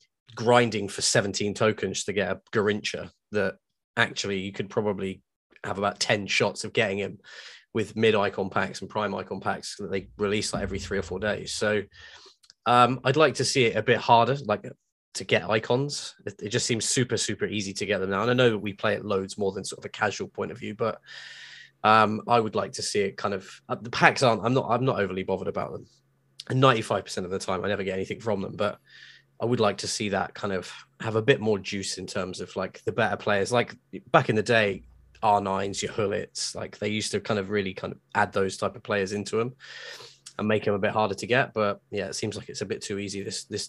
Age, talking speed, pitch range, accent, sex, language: 10-29, 245 wpm, 100-115 Hz, British, male, English